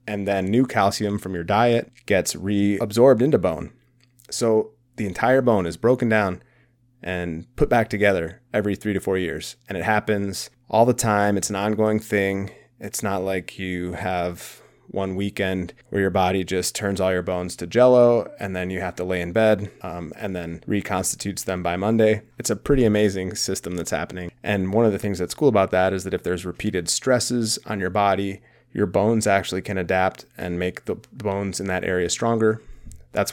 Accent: American